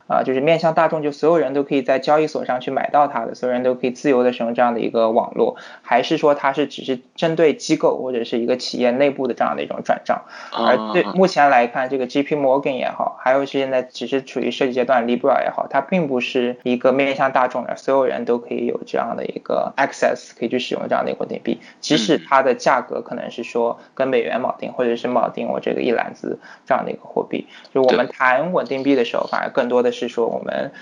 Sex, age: male, 20-39